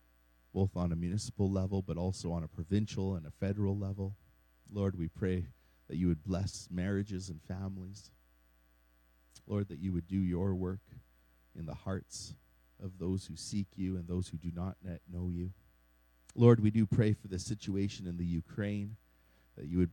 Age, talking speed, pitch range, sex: 40-59, 180 wpm, 70-95 Hz, male